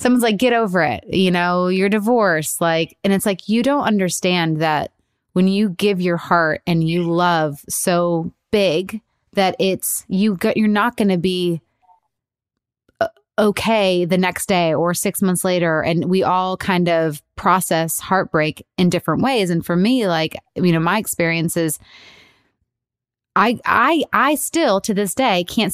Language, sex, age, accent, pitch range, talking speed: English, female, 20-39, American, 175-230 Hz, 165 wpm